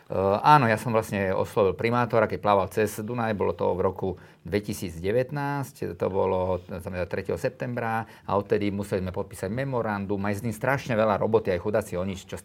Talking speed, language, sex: 175 wpm, Slovak, male